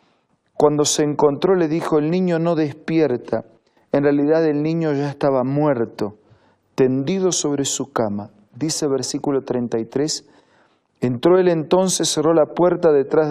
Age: 40-59